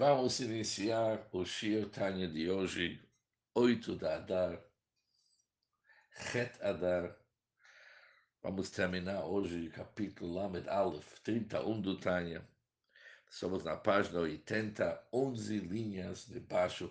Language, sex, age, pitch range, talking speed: Portuguese, male, 60-79, 90-110 Hz, 105 wpm